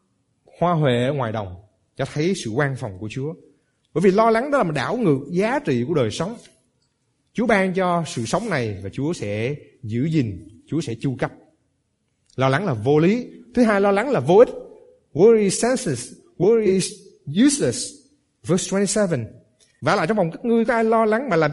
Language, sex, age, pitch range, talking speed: Vietnamese, male, 20-39, 130-200 Hz, 200 wpm